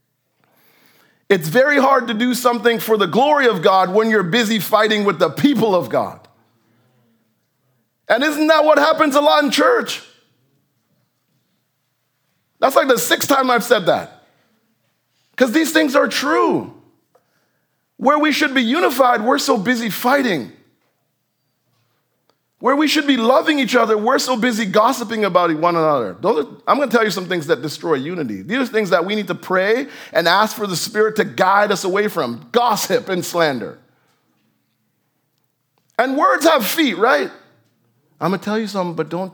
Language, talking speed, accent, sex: English, 165 wpm, American, male